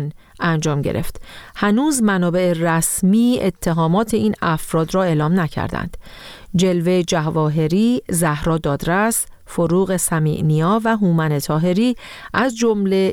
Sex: female